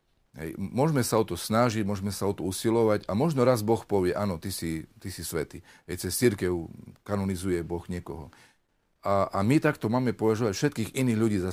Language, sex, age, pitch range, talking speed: Slovak, male, 40-59, 85-110 Hz, 185 wpm